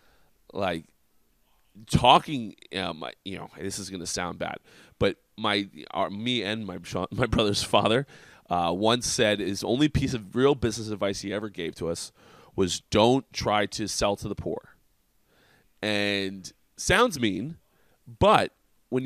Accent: American